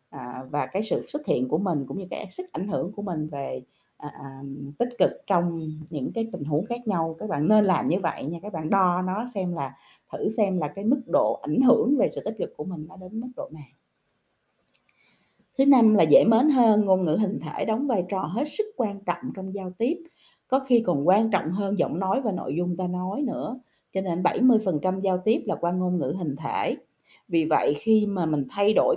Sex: female